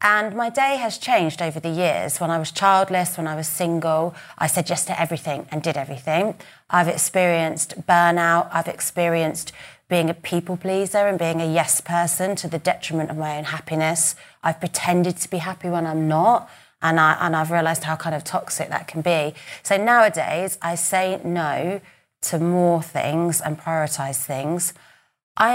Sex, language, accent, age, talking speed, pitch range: female, English, British, 30-49, 180 wpm, 155-175 Hz